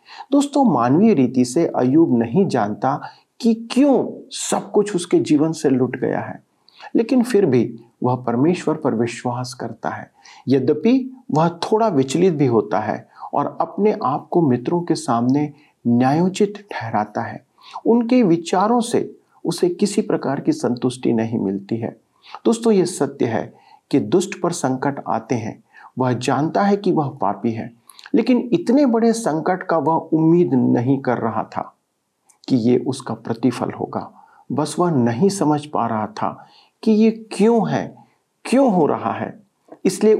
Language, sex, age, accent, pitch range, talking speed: Hindi, male, 50-69, native, 125-210 Hz, 150 wpm